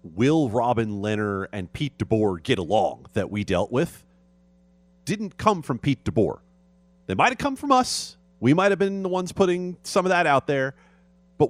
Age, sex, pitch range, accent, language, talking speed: 40-59, male, 110-180 Hz, American, English, 190 wpm